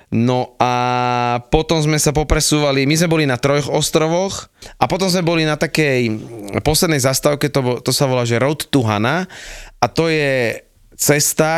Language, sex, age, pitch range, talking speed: Slovak, male, 20-39, 115-140 Hz, 170 wpm